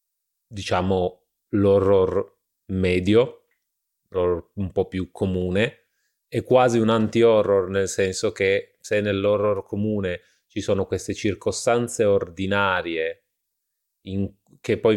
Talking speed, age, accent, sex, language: 100 wpm, 30-49, native, male, Italian